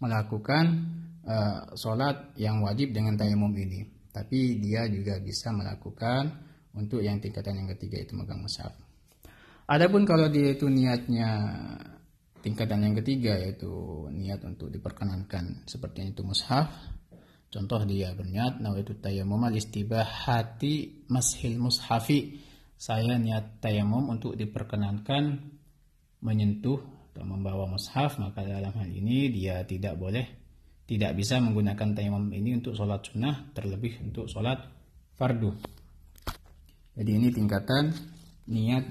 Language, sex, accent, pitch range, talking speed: Indonesian, male, native, 100-130 Hz, 120 wpm